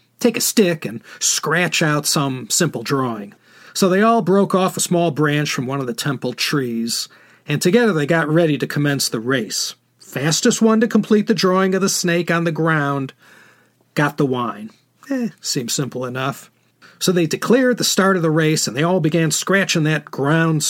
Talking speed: 190 wpm